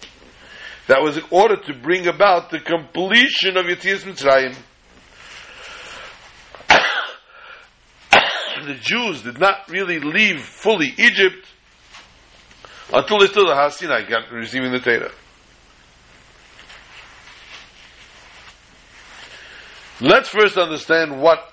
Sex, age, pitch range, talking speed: male, 60-79, 135-205 Hz, 90 wpm